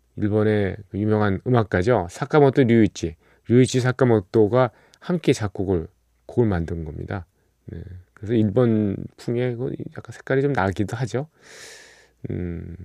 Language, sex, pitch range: Korean, male, 90-125 Hz